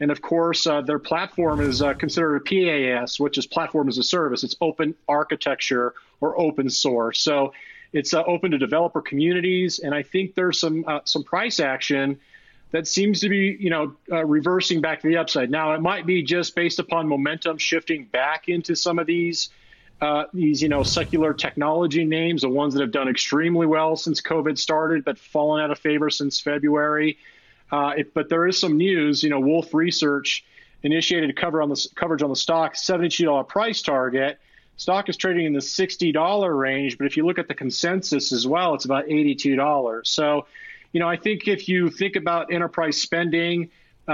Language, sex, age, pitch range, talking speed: English, male, 30-49, 145-170 Hz, 195 wpm